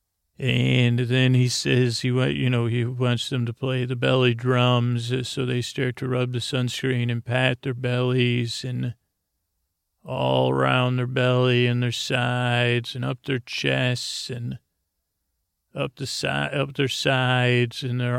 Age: 40-59